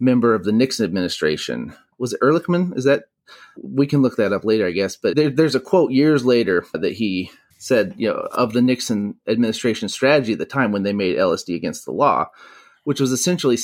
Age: 30-49